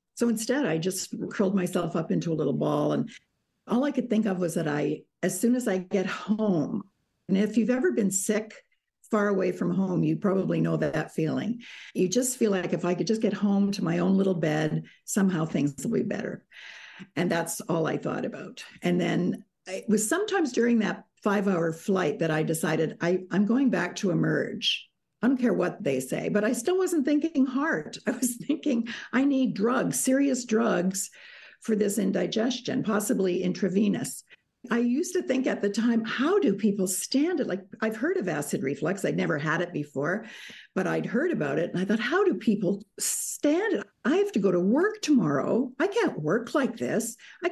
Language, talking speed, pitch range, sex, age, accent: English, 200 wpm, 180-250 Hz, female, 60-79, American